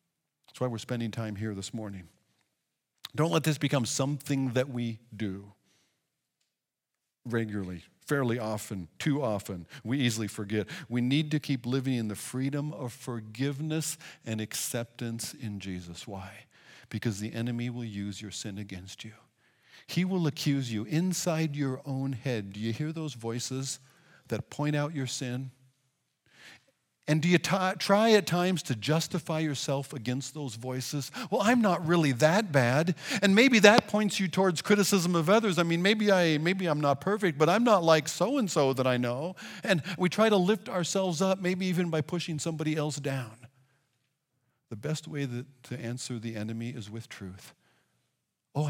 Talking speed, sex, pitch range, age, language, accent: 170 wpm, male, 115-160 Hz, 50-69, English, American